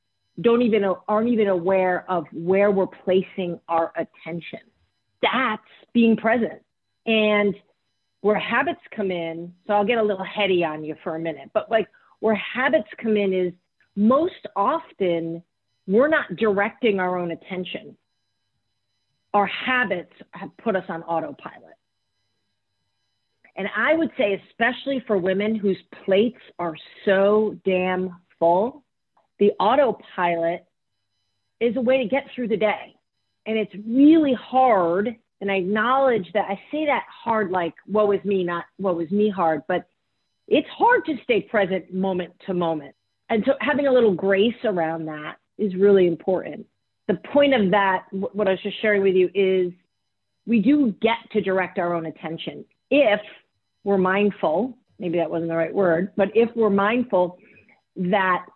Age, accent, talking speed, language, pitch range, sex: 40-59, American, 155 wpm, English, 175-225 Hz, female